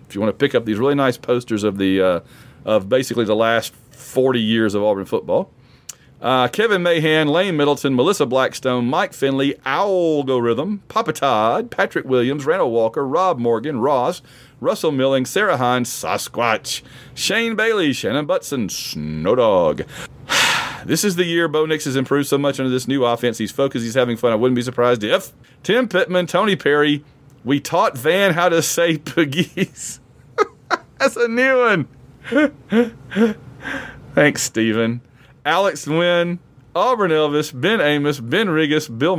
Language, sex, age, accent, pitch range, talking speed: English, male, 40-59, American, 125-170 Hz, 155 wpm